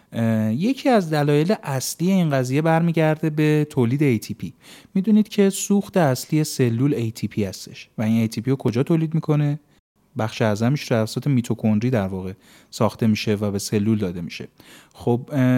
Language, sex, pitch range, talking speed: Persian, male, 120-165 Hz, 155 wpm